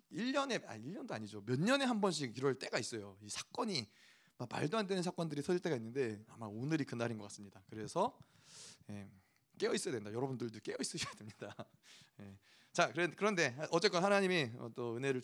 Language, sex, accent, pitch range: Korean, male, native, 135-205 Hz